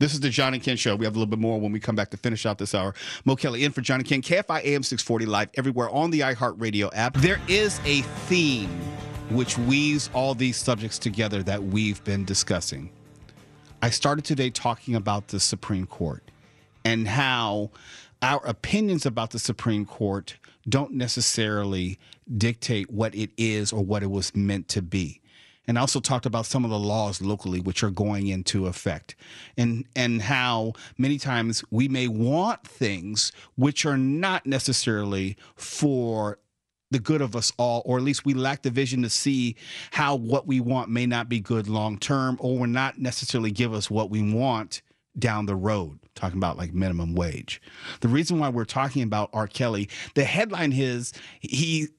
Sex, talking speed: male, 185 wpm